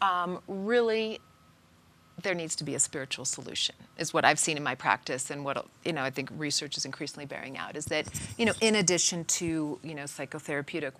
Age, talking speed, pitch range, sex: 40-59, 200 wpm, 145-195 Hz, female